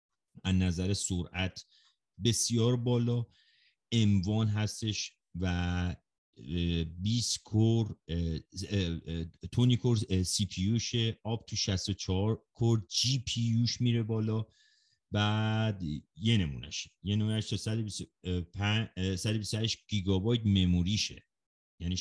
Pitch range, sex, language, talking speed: 90-110 Hz, male, Persian, 90 wpm